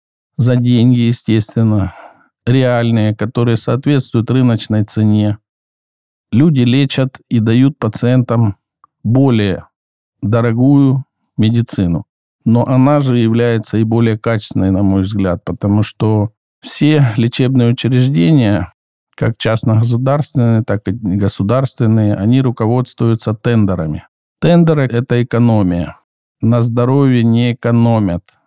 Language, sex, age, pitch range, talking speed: Russian, male, 50-69, 105-130 Hz, 95 wpm